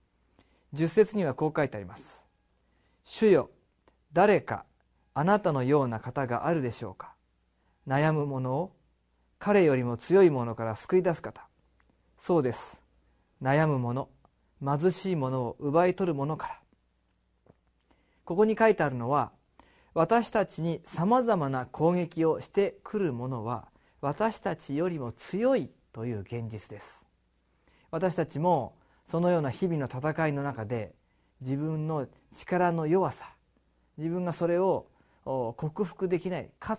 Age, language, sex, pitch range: 40-59, Japanese, male, 110-175 Hz